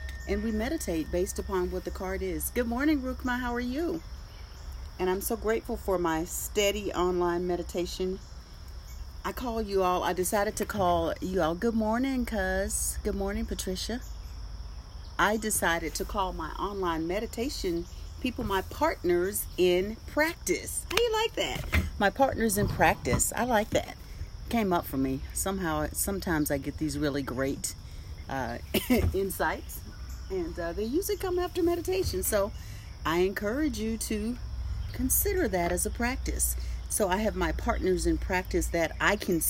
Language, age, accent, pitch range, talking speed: English, 40-59, American, 155-225 Hz, 160 wpm